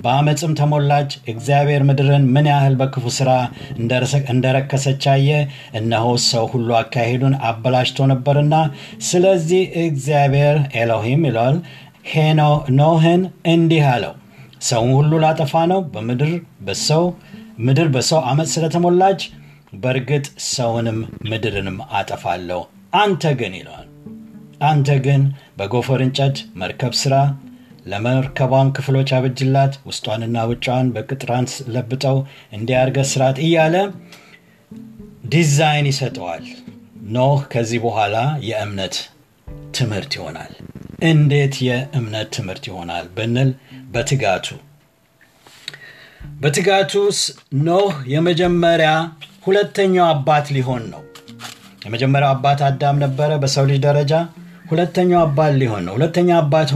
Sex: male